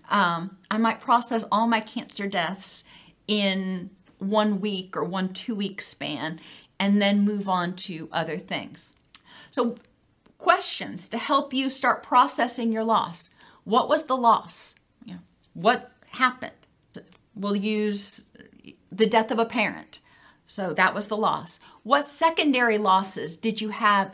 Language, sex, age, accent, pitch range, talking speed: English, female, 40-59, American, 190-230 Hz, 140 wpm